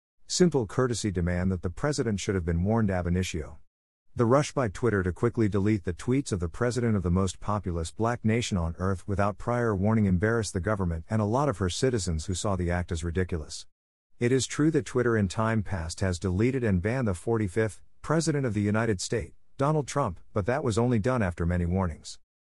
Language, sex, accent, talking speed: English, male, American, 210 wpm